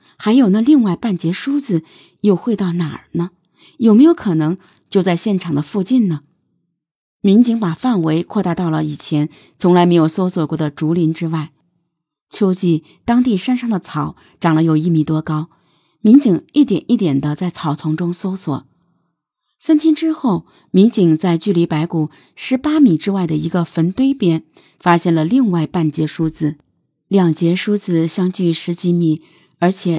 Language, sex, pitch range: Chinese, female, 165-205 Hz